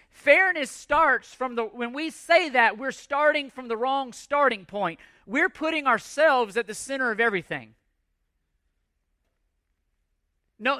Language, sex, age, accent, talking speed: English, male, 40-59, American, 135 wpm